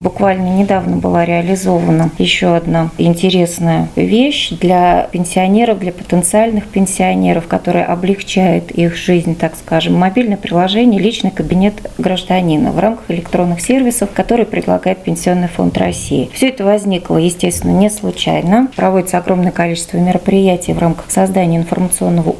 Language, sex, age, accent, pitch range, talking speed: Russian, female, 30-49, native, 170-205 Hz, 125 wpm